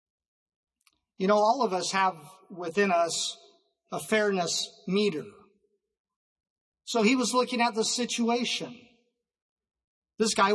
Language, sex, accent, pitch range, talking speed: English, male, American, 195-235 Hz, 115 wpm